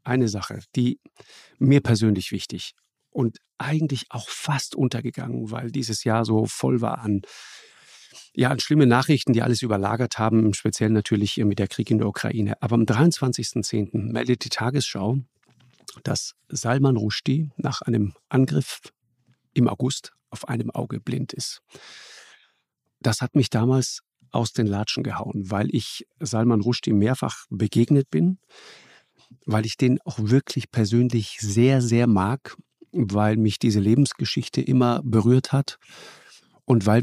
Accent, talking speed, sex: German, 140 wpm, male